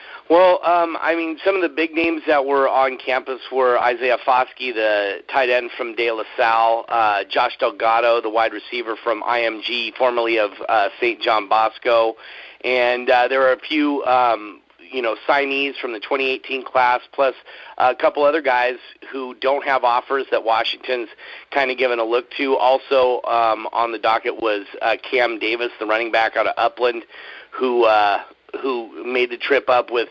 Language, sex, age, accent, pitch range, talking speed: English, male, 40-59, American, 115-140 Hz, 180 wpm